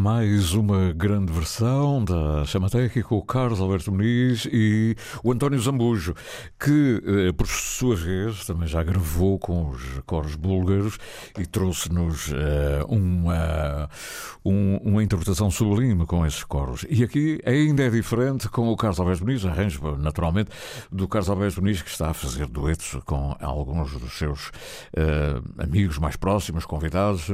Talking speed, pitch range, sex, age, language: 145 wpm, 85-120 Hz, male, 60-79, Portuguese